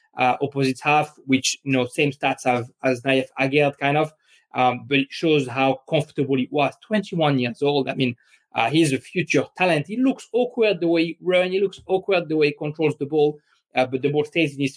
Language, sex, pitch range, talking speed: English, male, 130-150 Hz, 225 wpm